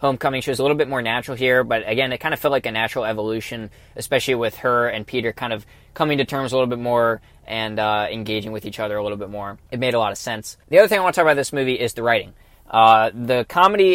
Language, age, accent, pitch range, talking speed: English, 20-39, American, 115-135 Hz, 280 wpm